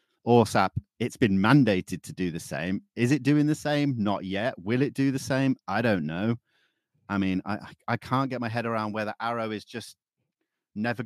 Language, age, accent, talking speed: English, 30-49, British, 200 wpm